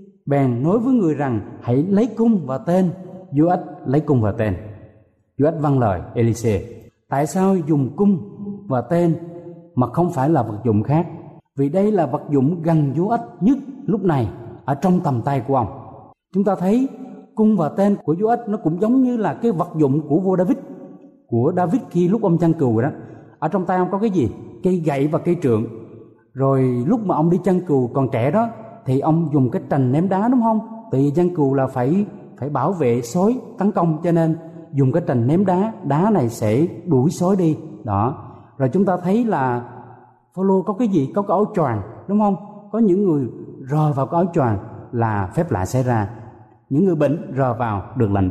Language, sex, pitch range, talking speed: Vietnamese, male, 130-195 Hz, 210 wpm